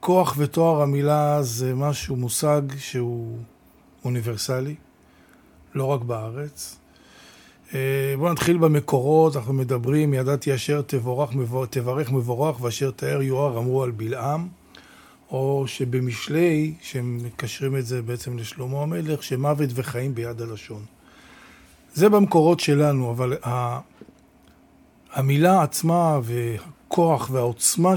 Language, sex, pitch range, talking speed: Hebrew, male, 130-155 Hz, 105 wpm